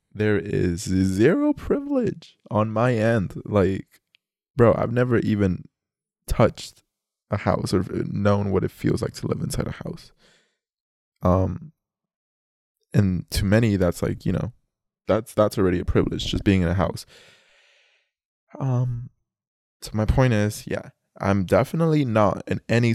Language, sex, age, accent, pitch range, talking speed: English, male, 20-39, American, 90-115 Hz, 145 wpm